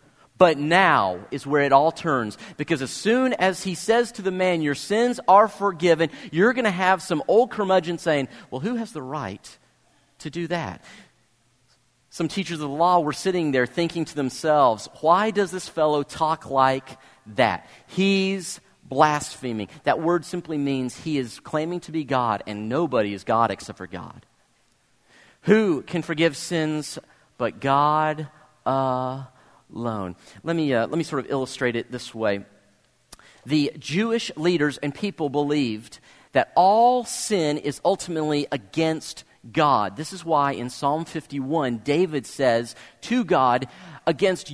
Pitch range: 135-185 Hz